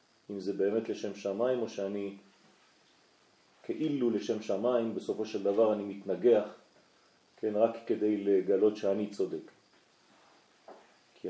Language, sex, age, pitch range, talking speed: French, male, 40-59, 105-120 Hz, 110 wpm